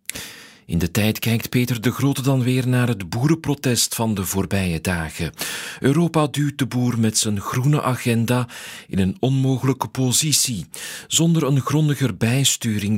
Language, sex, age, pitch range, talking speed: Dutch, male, 40-59, 100-135 Hz, 150 wpm